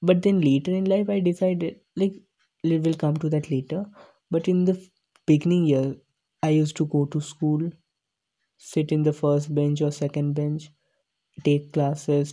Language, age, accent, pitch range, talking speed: English, 20-39, Indian, 145-175 Hz, 170 wpm